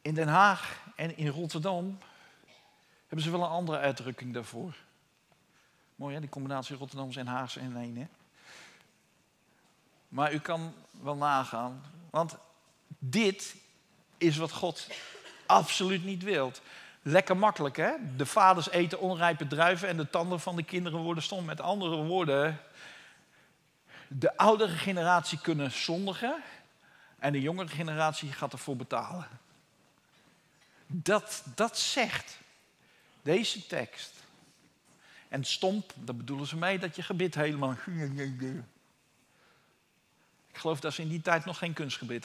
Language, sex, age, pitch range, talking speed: Dutch, male, 50-69, 140-185 Hz, 130 wpm